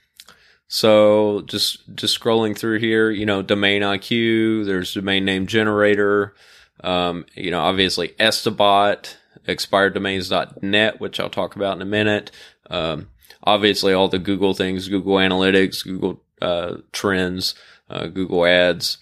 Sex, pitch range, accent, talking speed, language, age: male, 95-110 Hz, American, 130 wpm, English, 20-39